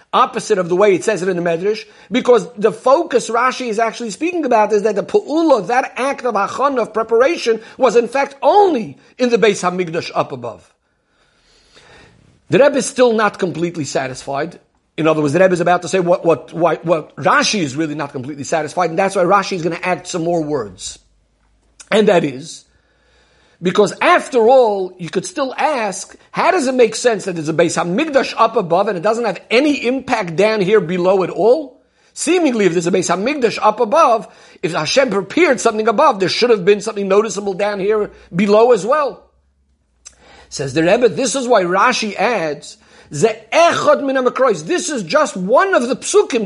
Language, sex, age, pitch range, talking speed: English, male, 50-69, 180-250 Hz, 190 wpm